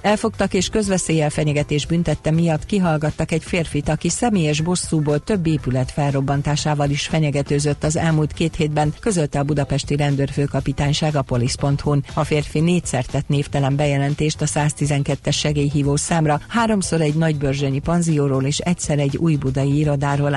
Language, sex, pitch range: Hungarian, female, 140-165 Hz